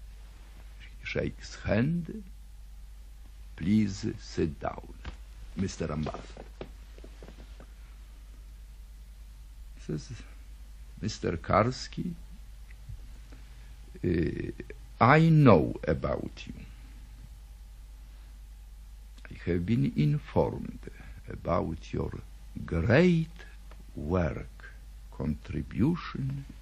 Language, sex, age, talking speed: English, male, 60-79, 55 wpm